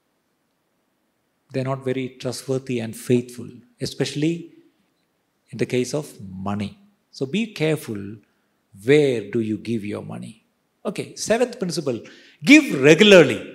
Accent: native